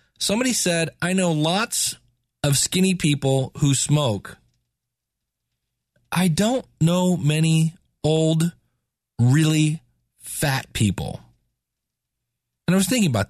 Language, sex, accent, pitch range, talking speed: English, male, American, 125-170 Hz, 105 wpm